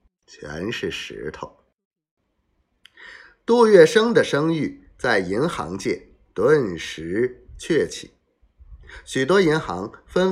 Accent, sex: native, male